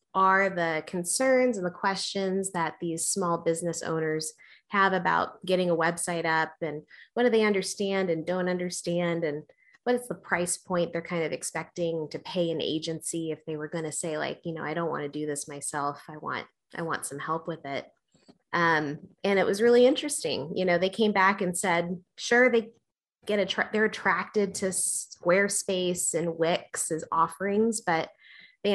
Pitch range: 165-200 Hz